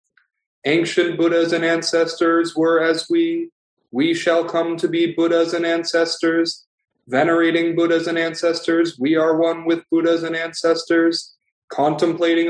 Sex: male